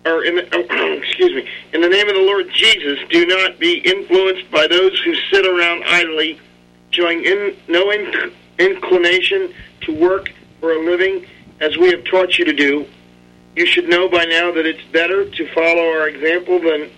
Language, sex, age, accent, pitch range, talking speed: English, male, 40-59, American, 145-190 Hz, 185 wpm